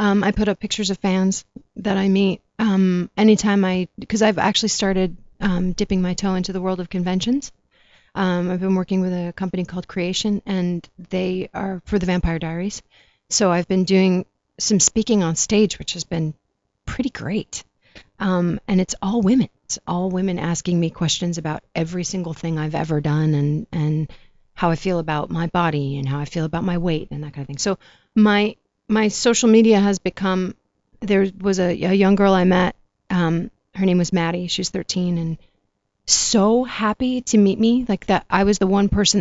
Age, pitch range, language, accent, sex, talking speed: 40-59, 170-200 Hz, English, American, female, 195 wpm